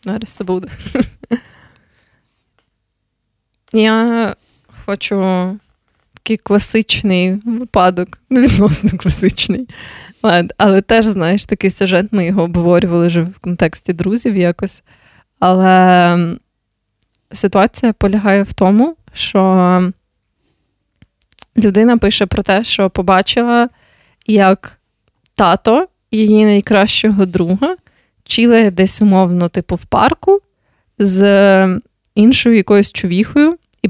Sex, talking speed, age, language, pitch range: female, 90 wpm, 20-39, Ukrainian, 185-220 Hz